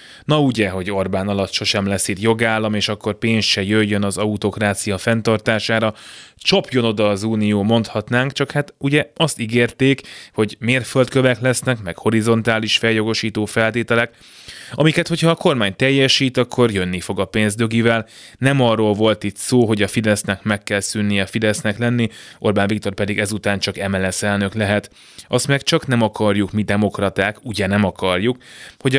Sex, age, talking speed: male, 20-39, 160 wpm